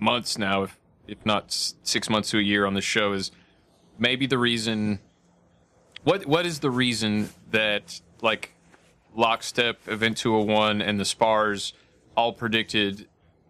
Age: 30-49